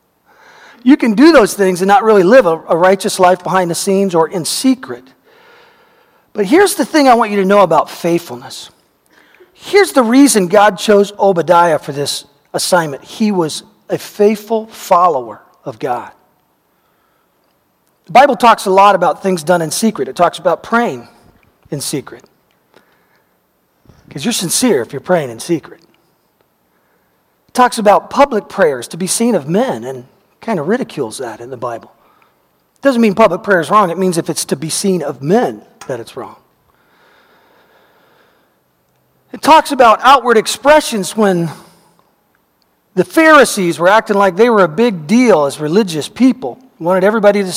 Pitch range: 180-250 Hz